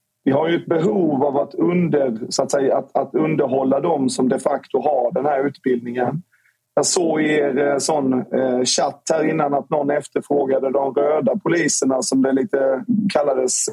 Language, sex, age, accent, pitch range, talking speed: Swedish, male, 30-49, native, 130-150 Hz, 180 wpm